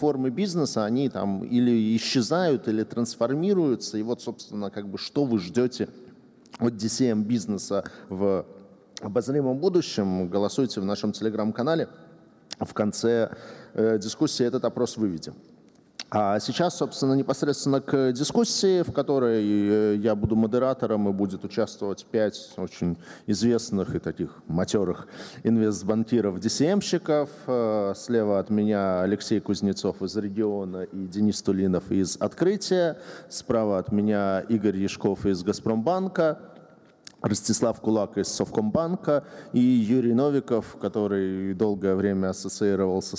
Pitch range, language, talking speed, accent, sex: 100-130 Hz, Russian, 120 wpm, native, male